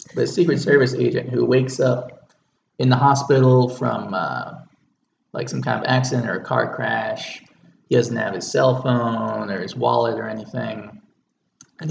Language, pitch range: English, 115-135 Hz